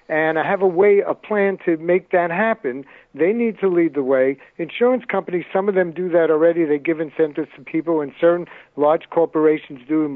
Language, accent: English, American